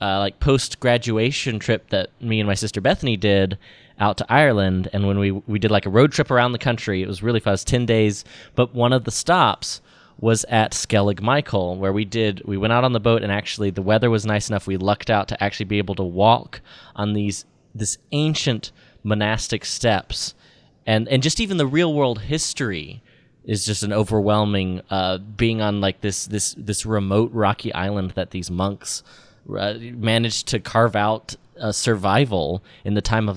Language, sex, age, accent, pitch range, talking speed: English, male, 20-39, American, 100-125 Hz, 200 wpm